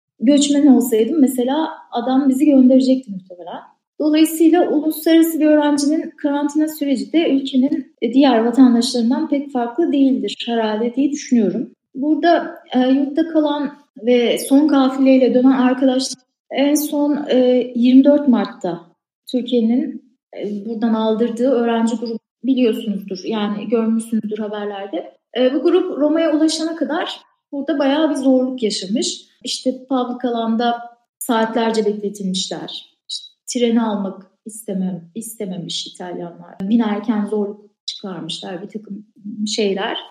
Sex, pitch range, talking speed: female, 215-285 Hz, 105 wpm